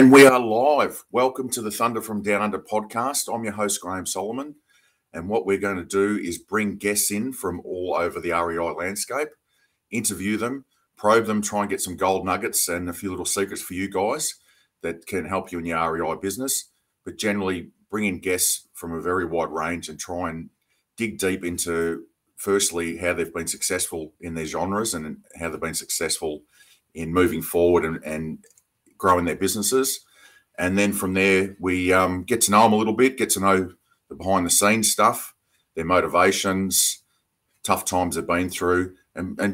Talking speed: 190 wpm